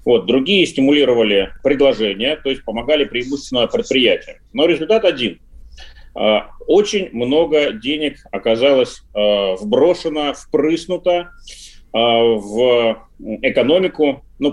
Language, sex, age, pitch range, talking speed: Russian, male, 30-49, 105-170 Hz, 85 wpm